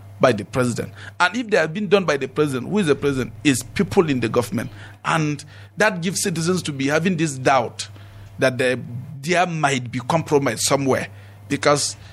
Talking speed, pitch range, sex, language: 185 wpm, 120-165 Hz, male, English